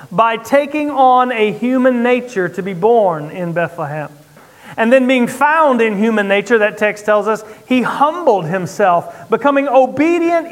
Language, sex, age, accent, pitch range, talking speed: English, male, 40-59, American, 205-265 Hz, 155 wpm